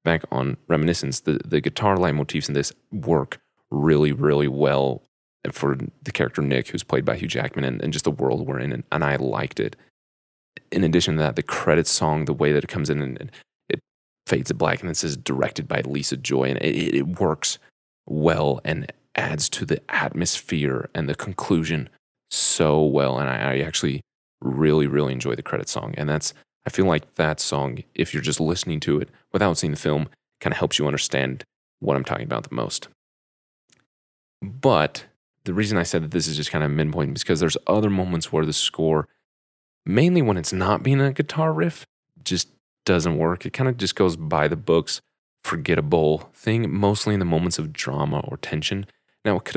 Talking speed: 200 wpm